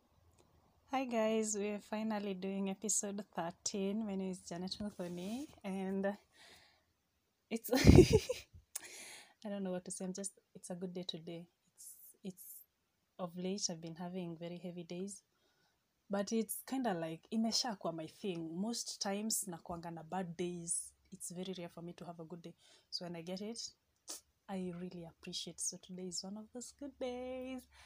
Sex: female